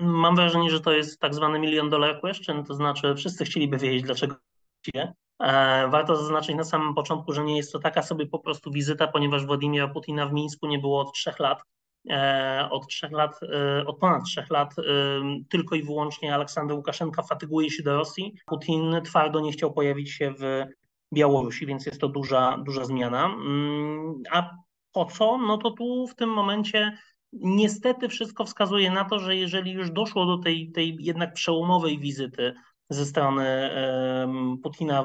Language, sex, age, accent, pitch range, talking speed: Polish, male, 30-49, native, 145-170 Hz, 165 wpm